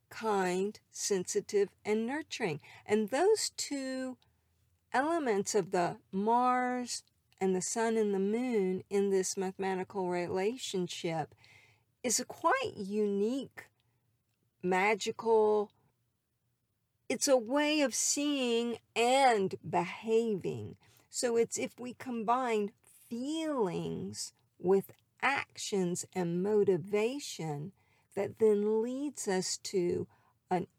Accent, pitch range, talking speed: American, 175-235 Hz, 95 wpm